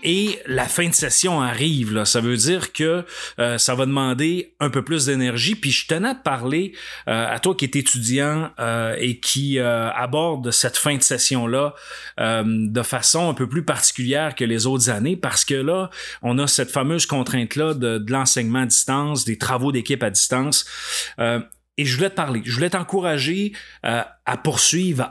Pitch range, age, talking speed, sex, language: 120-155 Hz, 30-49, 185 wpm, male, French